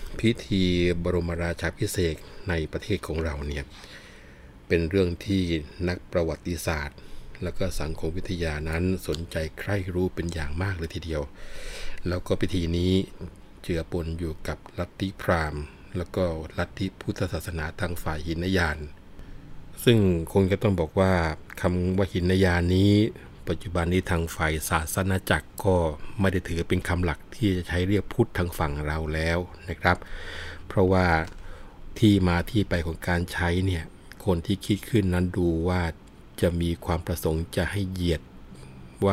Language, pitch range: Thai, 80-95 Hz